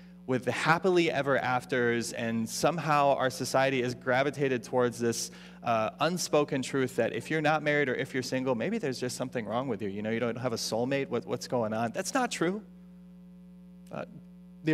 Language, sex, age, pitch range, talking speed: English, male, 30-49, 125-180 Hz, 190 wpm